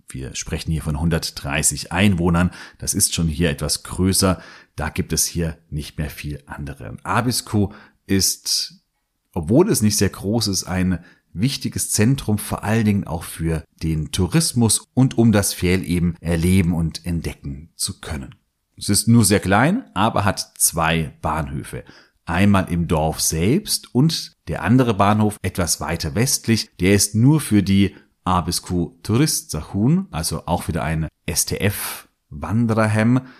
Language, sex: German, male